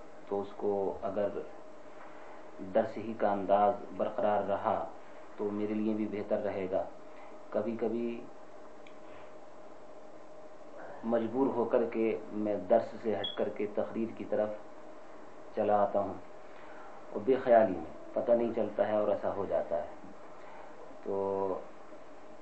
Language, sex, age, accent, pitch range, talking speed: English, male, 40-59, Indian, 105-120 Hz, 115 wpm